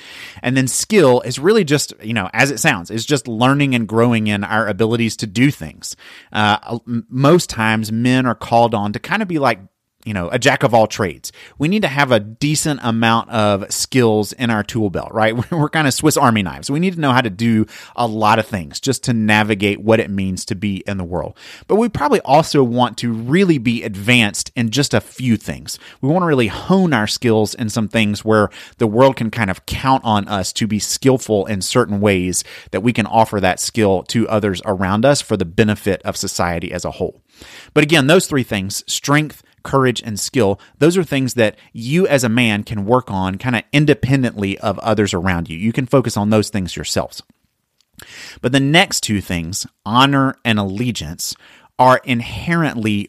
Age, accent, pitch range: 30-49, American, 105-130 Hz